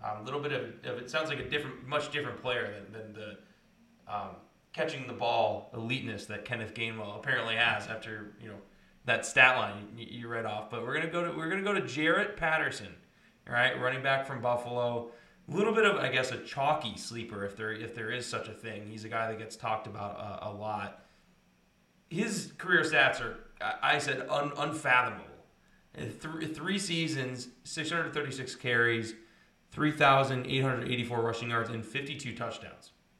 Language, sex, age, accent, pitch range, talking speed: English, male, 20-39, American, 115-140 Hz, 185 wpm